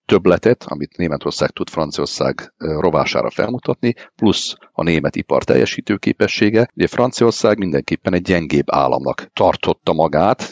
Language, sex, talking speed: Hungarian, male, 120 wpm